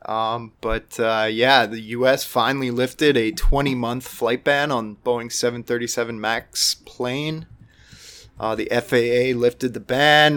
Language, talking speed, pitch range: English, 135 wpm, 115-130 Hz